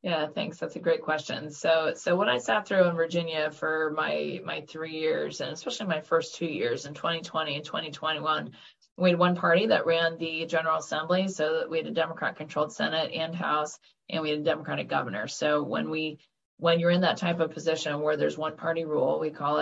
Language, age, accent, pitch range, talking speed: English, 20-39, American, 150-175 Hz, 215 wpm